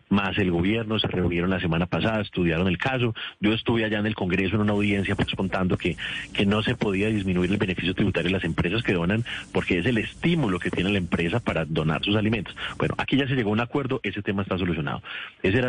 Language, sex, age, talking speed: Spanish, male, 30-49, 235 wpm